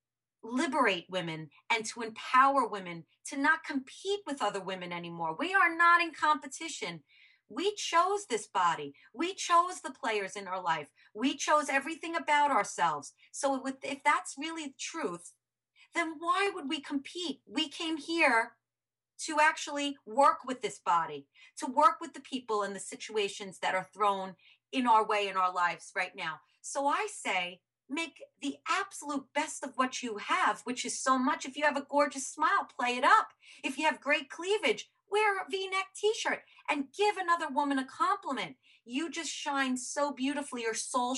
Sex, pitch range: female, 205-305 Hz